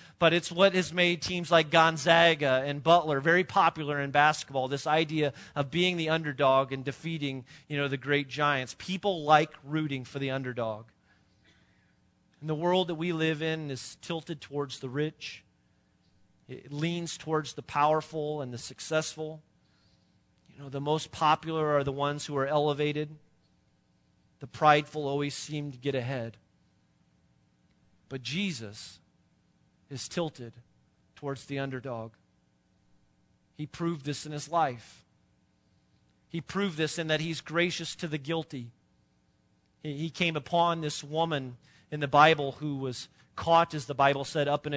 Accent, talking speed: American, 150 wpm